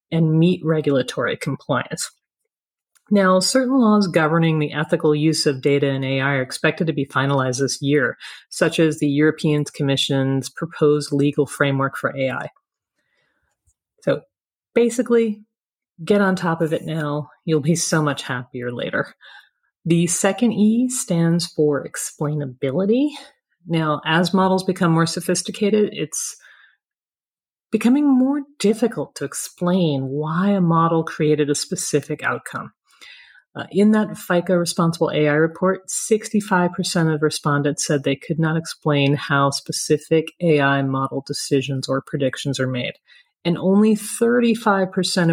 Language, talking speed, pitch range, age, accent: English, 130 wpm, 145-185 Hz, 40-59, American